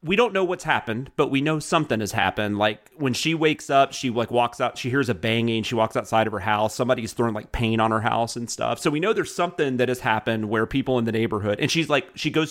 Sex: male